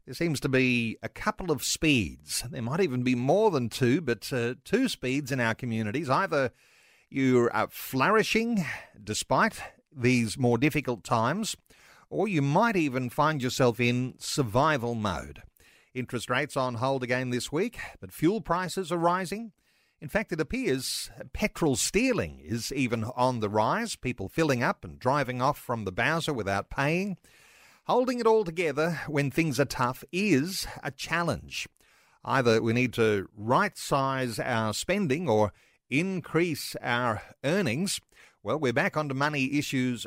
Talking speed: 155 wpm